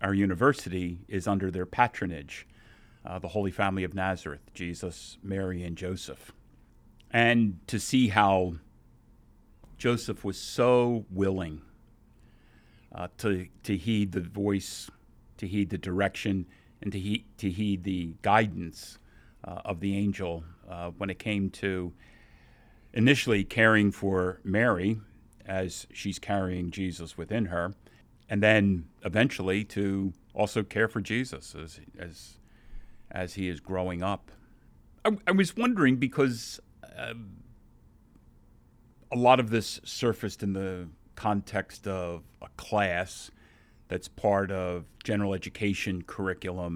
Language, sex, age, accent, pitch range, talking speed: English, male, 50-69, American, 90-105 Hz, 125 wpm